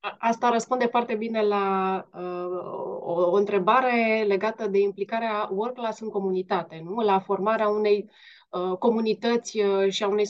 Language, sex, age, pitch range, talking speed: Romanian, female, 20-39, 205-240 Hz, 130 wpm